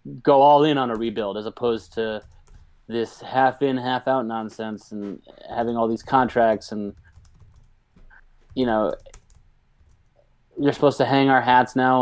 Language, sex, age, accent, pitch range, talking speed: English, male, 20-39, American, 105-125 Hz, 140 wpm